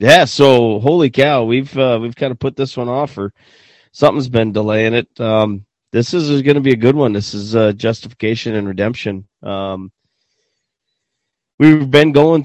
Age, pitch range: 30-49, 105-135 Hz